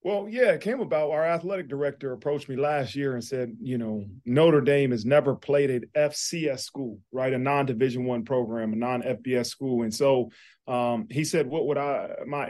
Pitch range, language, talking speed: 125-145 Hz, English, 195 wpm